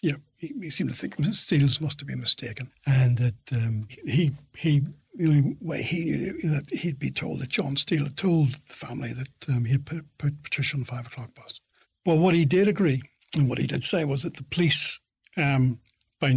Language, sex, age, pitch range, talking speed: English, male, 60-79, 130-160 Hz, 220 wpm